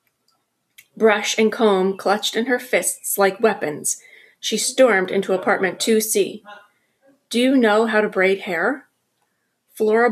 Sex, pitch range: female, 190-240 Hz